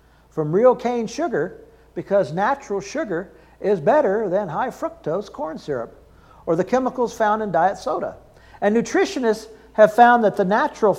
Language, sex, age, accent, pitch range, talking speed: English, male, 50-69, American, 180-250 Hz, 155 wpm